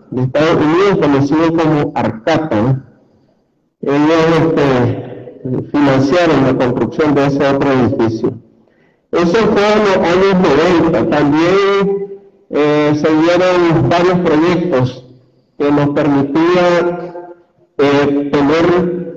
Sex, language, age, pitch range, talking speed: male, Spanish, 50-69, 140-170 Hz, 100 wpm